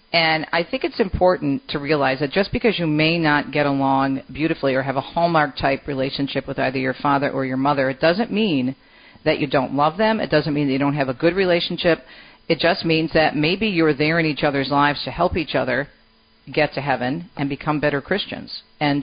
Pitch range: 135-160 Hz